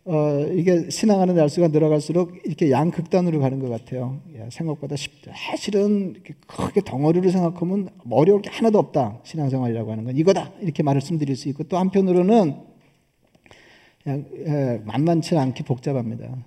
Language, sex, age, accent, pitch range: Korean, male, 40-59, native, 140-175 Hz